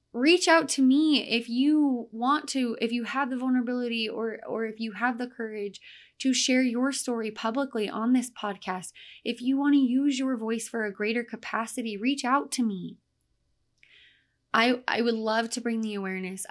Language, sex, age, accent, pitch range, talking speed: English, female, 20-39, American, 200-245 Hz, 185 wpm